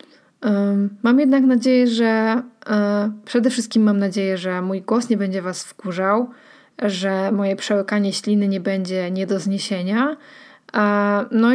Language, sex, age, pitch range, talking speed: Polish, female, 20-39, 200-245 Hz, 130 wpm